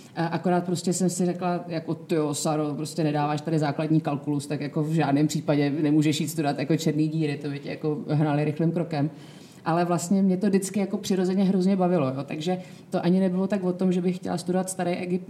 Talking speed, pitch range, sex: 205 wpm, 160-185 Hz, female